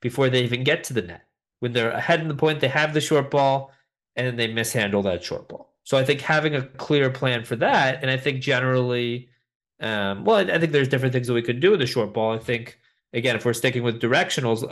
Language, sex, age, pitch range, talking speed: English, male, 30-49, 115-140 Hz, 250 wpm